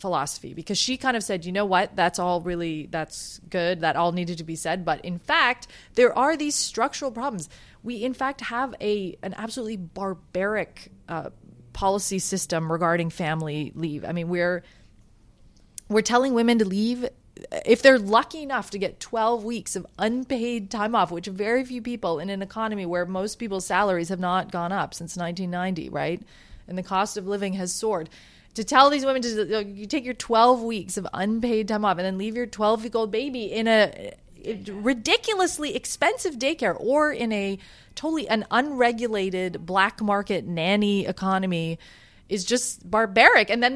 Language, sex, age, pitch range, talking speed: English, female, 30-49, 175-225 Hz, 175 wpm